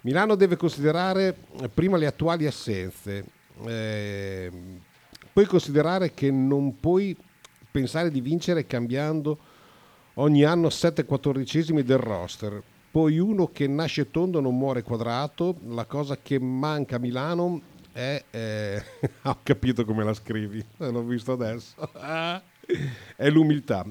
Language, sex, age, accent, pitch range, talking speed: Italian, male, 50-69, native, 115-155 Hz, 125 wpm